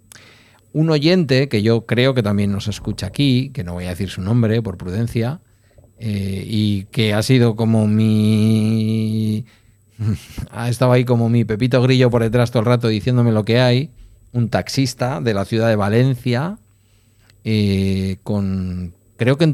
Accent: Spanish